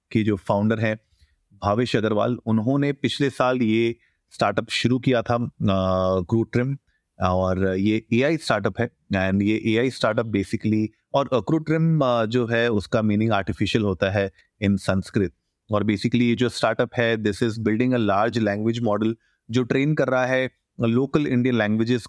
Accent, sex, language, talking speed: native, male, Hindi, 155 wpm